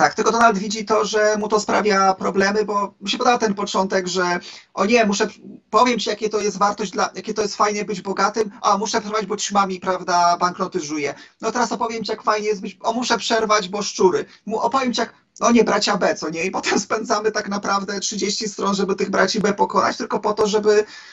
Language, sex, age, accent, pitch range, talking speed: Polish, male, 40-59, native, 190-215 Hz, 225 wpm